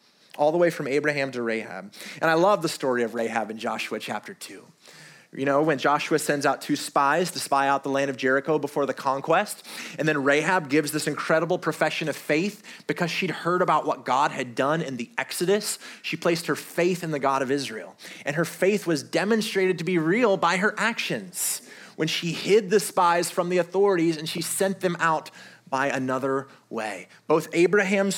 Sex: male